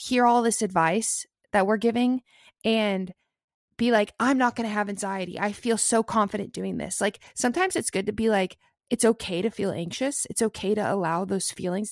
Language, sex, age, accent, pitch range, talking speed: English, female, 20-39, American, 200-235 Hz, 195 wpm